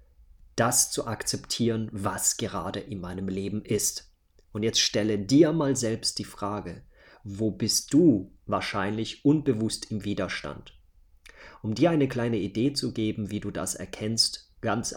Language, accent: German, German